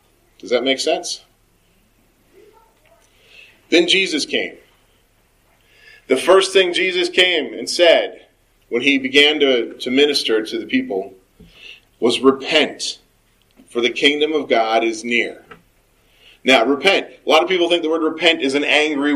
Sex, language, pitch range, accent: male, English, 135-190 Hz, American